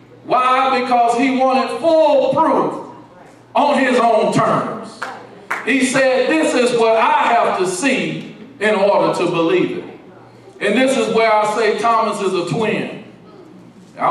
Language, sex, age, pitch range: English, male, 40-59, 180-225 Hz